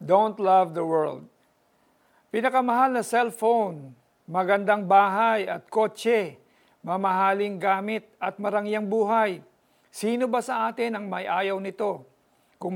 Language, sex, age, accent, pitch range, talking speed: Filipino, male, 50-69, native, 185-220 Hz, 120 wpm